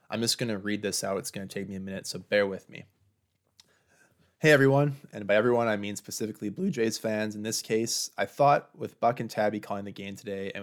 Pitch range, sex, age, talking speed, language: 100-135 Hz, male, 20-39, 245 wpm, English